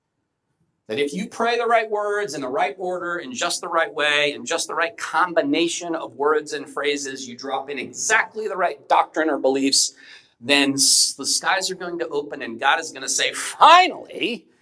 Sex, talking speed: male, 195 wpm